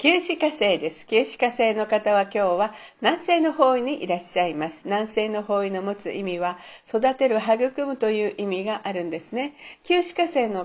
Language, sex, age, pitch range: Japanese, female, 50-69, 200-270 Hz